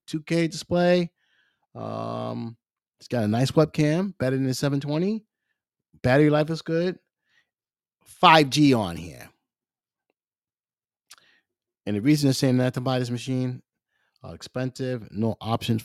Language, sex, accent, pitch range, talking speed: English, male, American, 100-140 Hz, 125 wpm